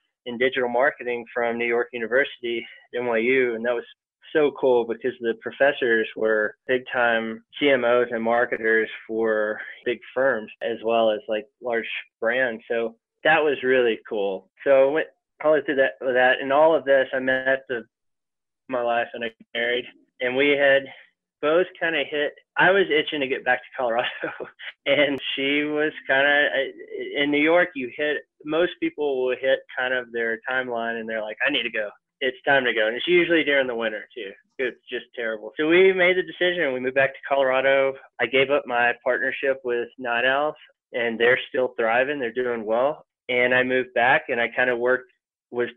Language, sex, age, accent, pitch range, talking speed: English, male, 20-39, American, 120-135 Hz, 190 wpm